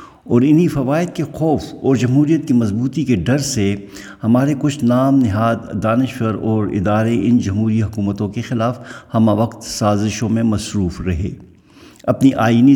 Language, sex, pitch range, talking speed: Urdu, male, 105-130 Hz, 150 wpm